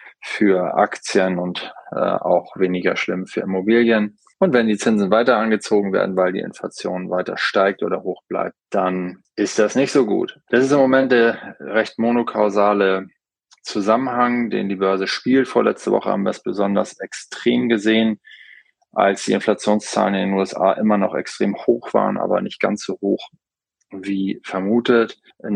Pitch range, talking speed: 95-110 Hz, 160 wpm